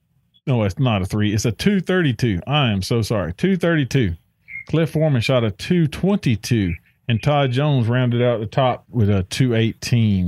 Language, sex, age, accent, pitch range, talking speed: English, male, 40-59, American, 110-150 Hz, 165 wpm